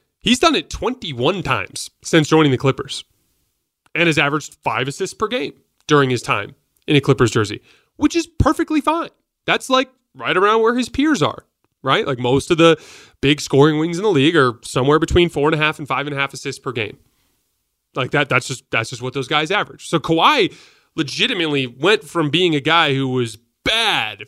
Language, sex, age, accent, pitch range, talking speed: English, male, 30-49, American, 130-170 Hz, 205 wpm